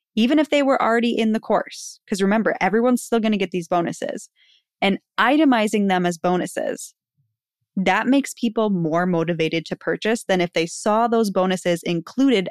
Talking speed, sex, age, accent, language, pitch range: 175 wpm, female, 10-29, American, English, 175-230 Hz